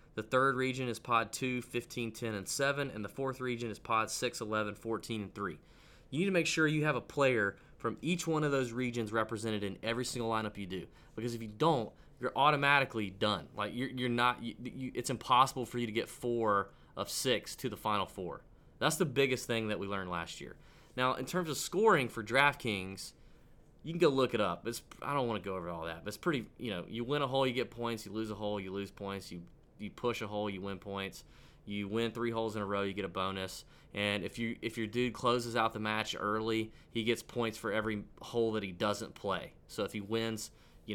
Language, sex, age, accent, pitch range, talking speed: English, male, 20-39, American, 105-125 Hz, 240 wpm